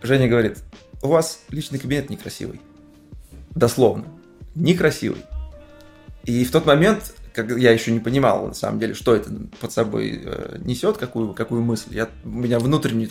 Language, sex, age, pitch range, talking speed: Russian, male, 20-39, 115-155 Hz, 155 wpm